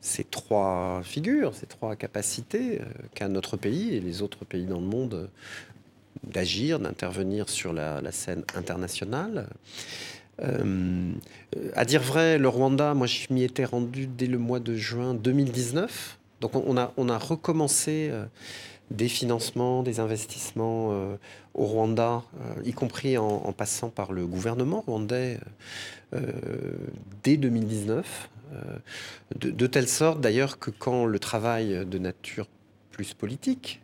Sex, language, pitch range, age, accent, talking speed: male, French, 100-130 Hz, 40-59, French, 140 wpm